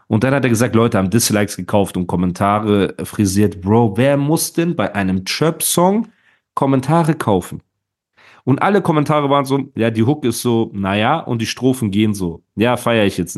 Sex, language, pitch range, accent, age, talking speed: male, German, 105-145 Hz, German, 40-59, 185 wpm